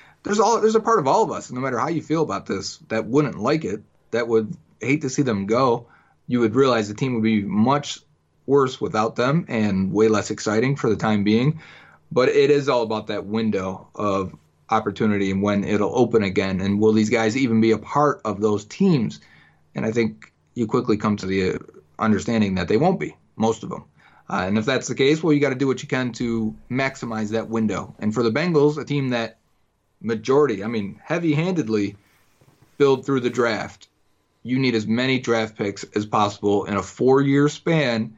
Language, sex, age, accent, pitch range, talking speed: English, male, 30-49, American, 110-135 Hz, 210 wpm